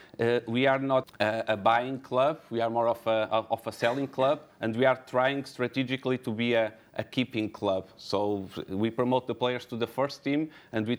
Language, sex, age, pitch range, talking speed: English, male, 30-49, 110-125 Hz, 215 wpm